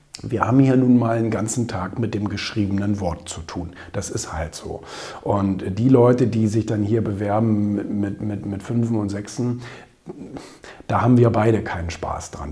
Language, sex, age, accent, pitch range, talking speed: German, male, 40-59, German, 105-125 Hz, 185 wpm